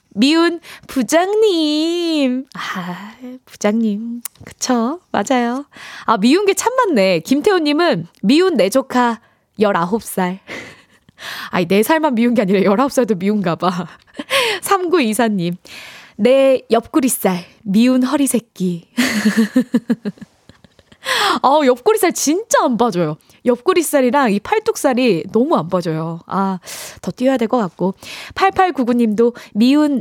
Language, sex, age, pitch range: Korean, female, 20-39, 195-285 Hz